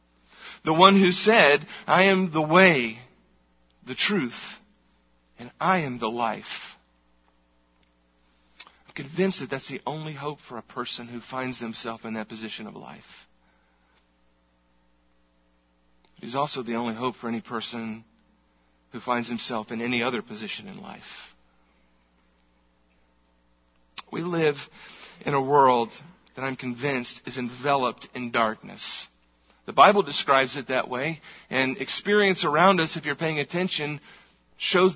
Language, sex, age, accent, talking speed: English, male, 50-69, American, 135 wpm